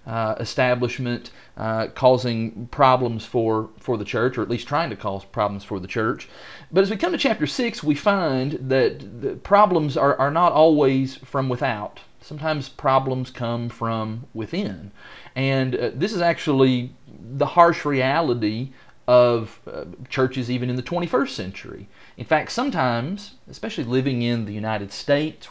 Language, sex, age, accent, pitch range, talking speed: English, male, 40-59, American, 110-135 Hz, 155 wpm